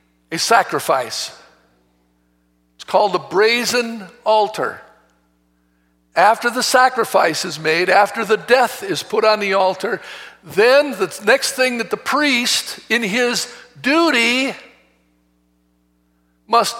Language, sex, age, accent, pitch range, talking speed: English, male, 60-79, American, 140-225 Hz, 110 wpm